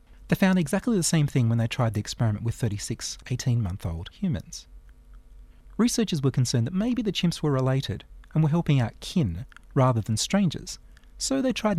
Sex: male